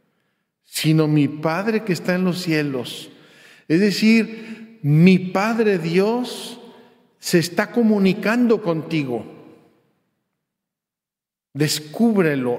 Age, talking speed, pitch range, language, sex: 50-69, 85 wpm, 150-190 Hz, Spanish, male